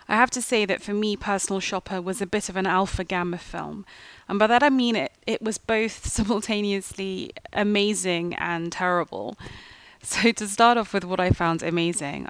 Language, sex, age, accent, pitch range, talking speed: English, female, 30-49, British, 175-210 Hz, 190 wpm